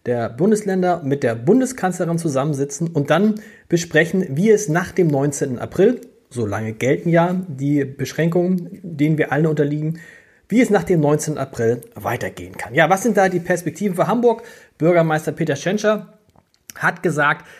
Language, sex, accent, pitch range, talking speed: German, male, German, 140-180 Hz, 155 wpm